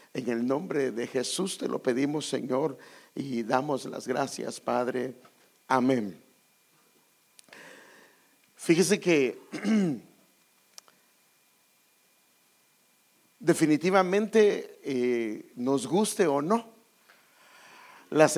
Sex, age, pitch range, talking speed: male, 50-69, 135-195 Hz, 80 wpm